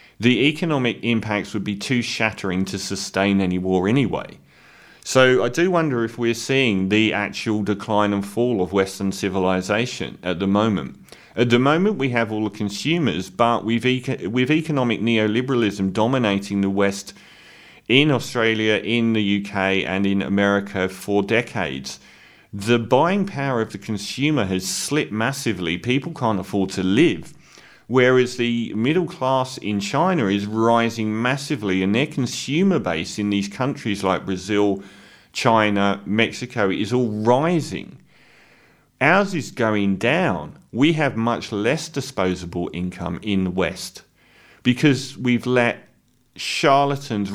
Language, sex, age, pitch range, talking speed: English, male, 40-59, 100-125 Hz, 140 wpm